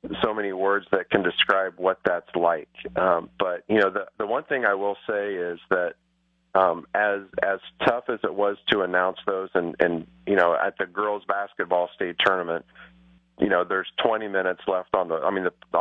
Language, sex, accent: English, male, American